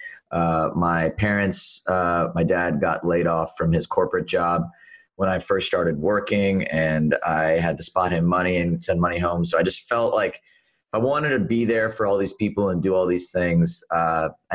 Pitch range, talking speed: 80-90 Hz, 205 wpm